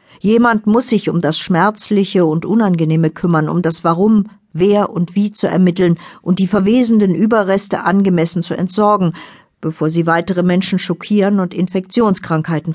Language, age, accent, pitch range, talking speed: German, 60-79, German, 160-210 Hz, 145 wpm